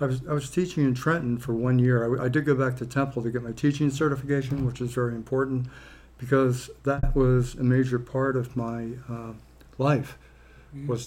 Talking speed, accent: 200 wpm, American